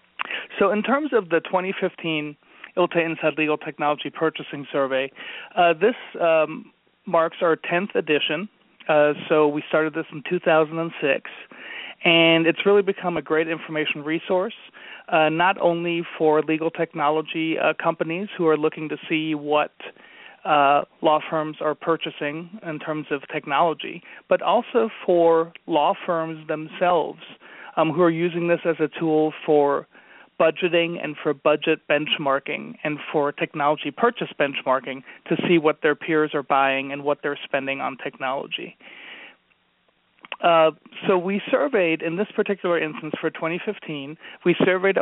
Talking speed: 145 wpm